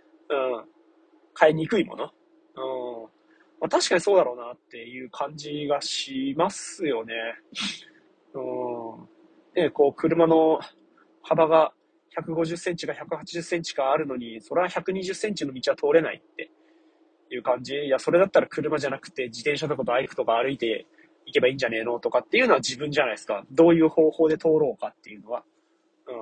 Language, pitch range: Japanese, 135-205 Hz